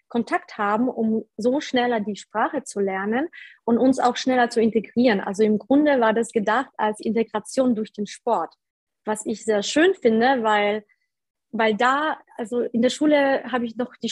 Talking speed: 180 wpm